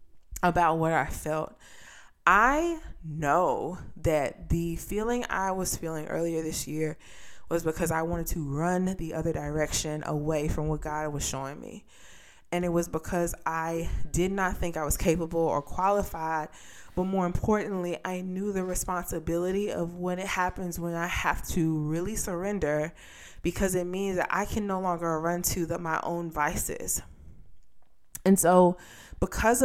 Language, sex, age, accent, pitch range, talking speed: English, female, 20-39, American, 165-200 Hz, 155 wpm